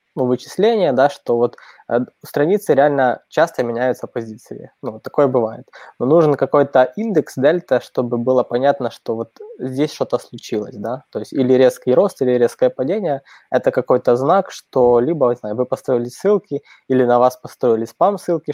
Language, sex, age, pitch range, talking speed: Russian, male, 20-39, 125-140 Hz, 165 wpm